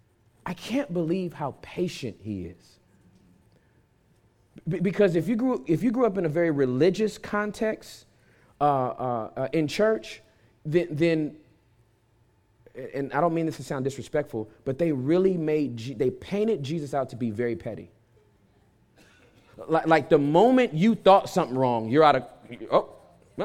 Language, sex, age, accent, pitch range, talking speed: English, male, 30-49, American, 135-225 Hz, 155 wpm